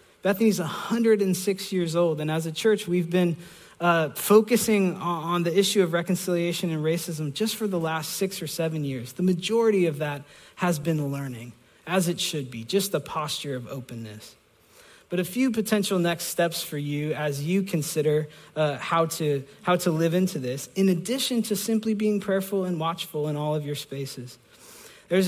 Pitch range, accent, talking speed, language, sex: 150-185 Hz, American, 180 wpm, English, male